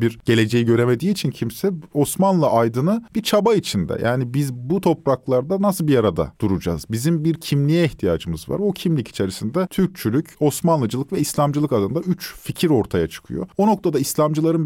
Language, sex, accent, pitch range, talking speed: Turkish, male, native, 115-170 Hz, 155 wpm